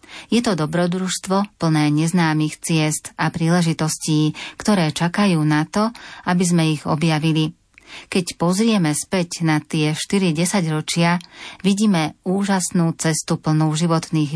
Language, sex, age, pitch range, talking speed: Slovak, female, 30-49, 165-190 Hz, 115 wpm